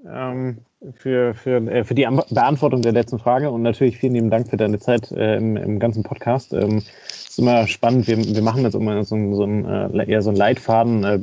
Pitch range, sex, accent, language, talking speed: 105-125 Hz, male, German, German, 230 wpm